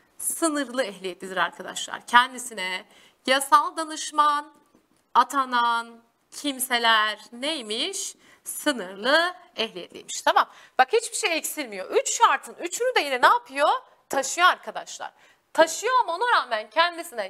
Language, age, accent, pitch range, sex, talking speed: Turkish, 30-49, native, 260-415 Hz, female, 105 wpm